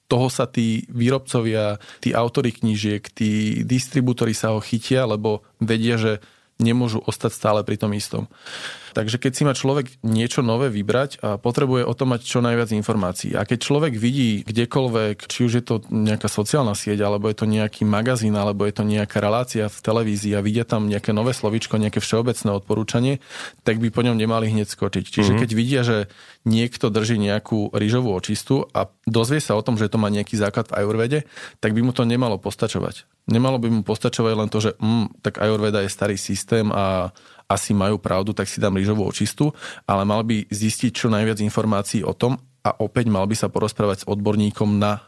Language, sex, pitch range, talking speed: Slovak, male, 105-120 Hz, 190 wpm